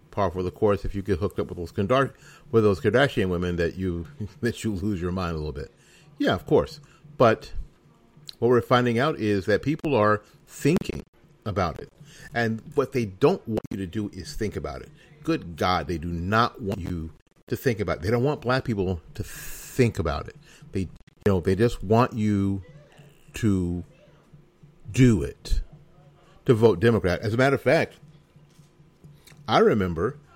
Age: 50-69